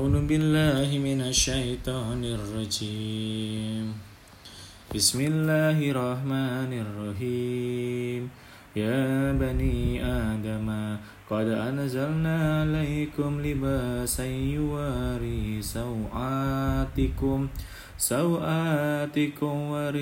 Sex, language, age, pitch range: male, Indonesian, 20-39, 115-145 Hz